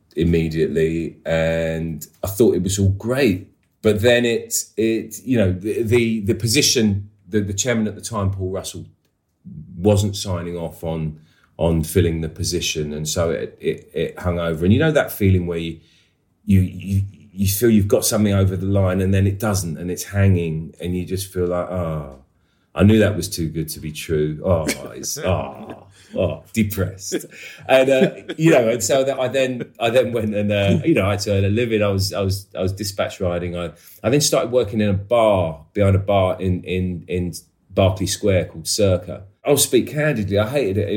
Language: English